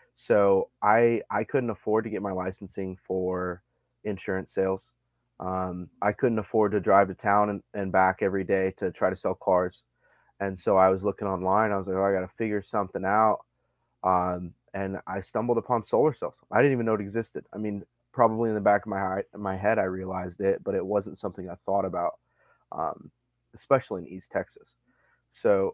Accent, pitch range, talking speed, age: American, 95-110 Hz, 200 wpm, 30-49